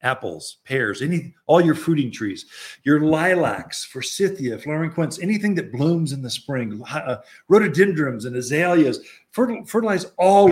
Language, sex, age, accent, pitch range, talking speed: English, male, 50-69, American, 125-175 Hz, 135 wpm